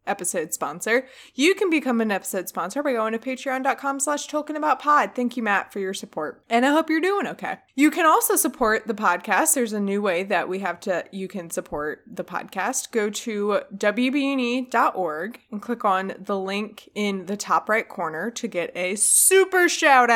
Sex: female